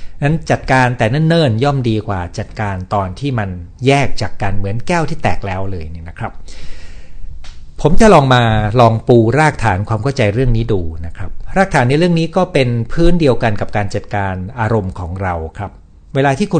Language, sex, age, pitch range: Thai, male, 60-79, 95-130 Hz